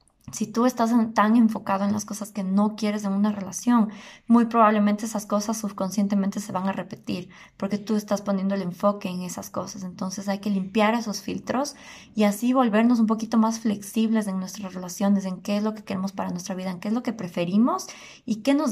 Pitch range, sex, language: 195-220 Hz, female, Spanish